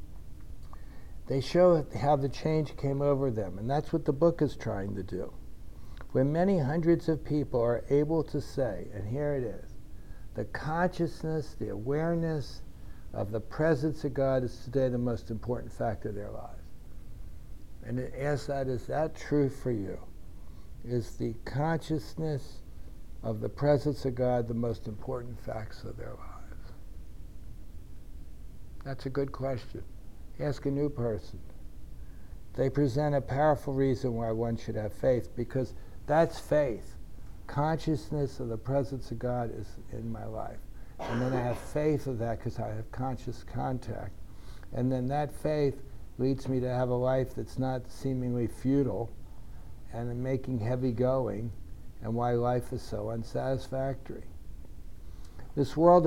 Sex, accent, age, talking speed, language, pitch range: male, American, 60-79, 150 wpm, English, 105-140 Hz